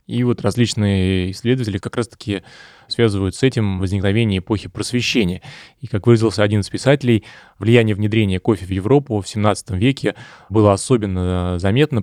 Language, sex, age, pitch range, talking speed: Russian, male, 20-39, 95-115 Hz, 145 wpm